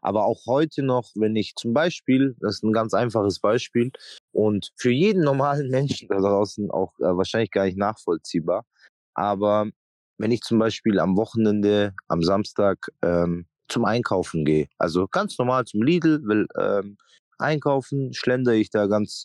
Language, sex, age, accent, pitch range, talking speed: German, male, 20-39, German, 100-135 Hz, 160 wpm